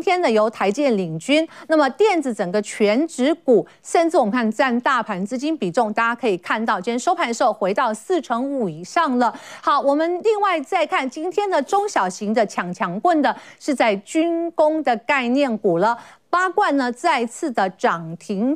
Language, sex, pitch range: Chinese, female, 225-325 Hz